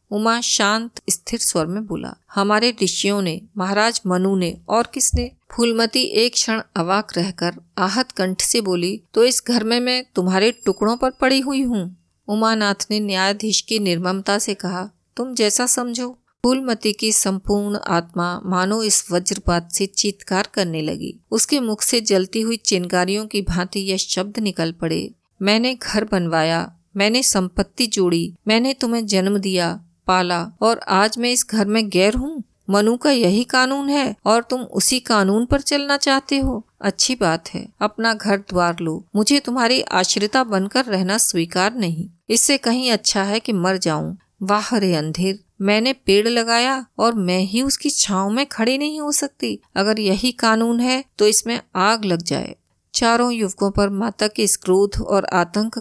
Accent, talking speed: native, 165 wpm